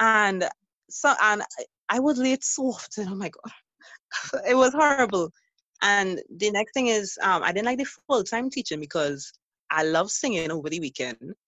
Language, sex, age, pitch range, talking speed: English, female, 20-39, 160-255 Hz, 185 wpm